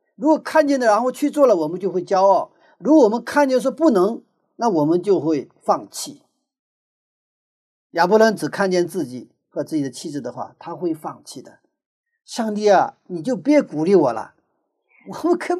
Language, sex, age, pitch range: Chinese, male, 50-69, 195-295 Hz